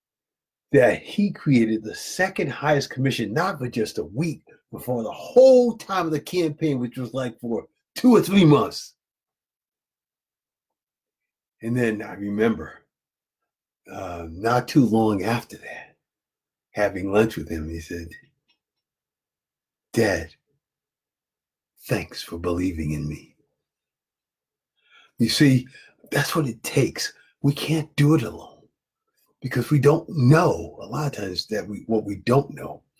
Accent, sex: American, male